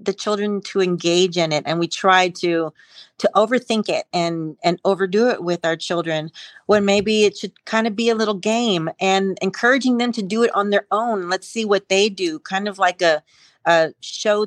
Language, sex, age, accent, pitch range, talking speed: English, female, 40-59, American, 175-215 Hz, 205 wpm